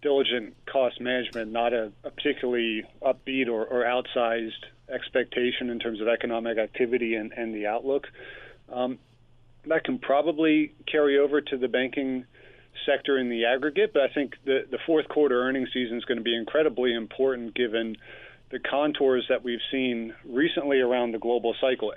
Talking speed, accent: 165 wpm, American